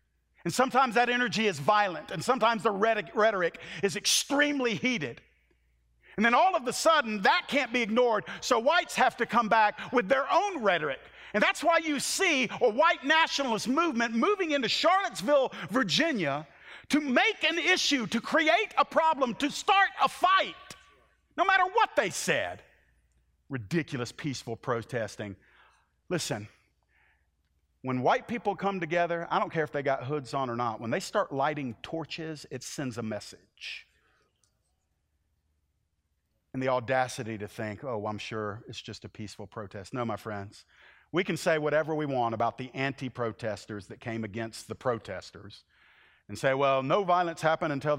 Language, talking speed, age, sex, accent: English, 160 wpm, 50-69, male, American